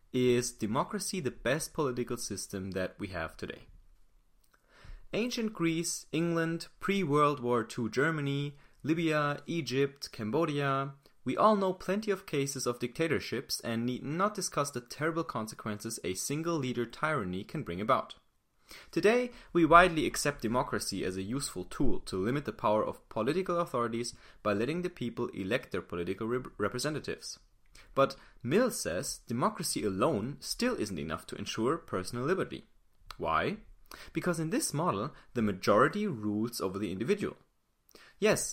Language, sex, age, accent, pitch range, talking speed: English, male, 30-49, German, 110-170 Hz, 140 wpm